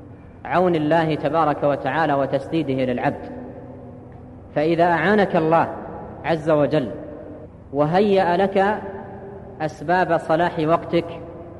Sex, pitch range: female, 145-175 Hz